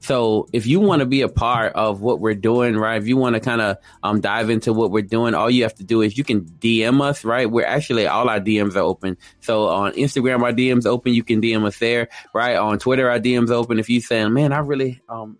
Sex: male